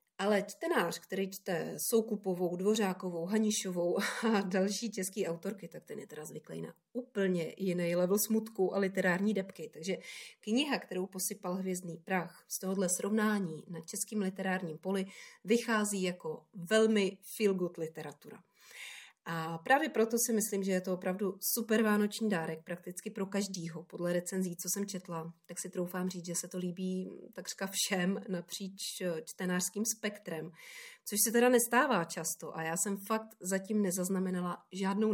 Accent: native